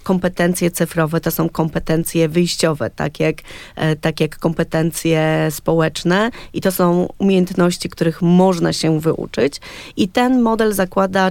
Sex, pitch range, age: female, 170-200 Hz, 30-49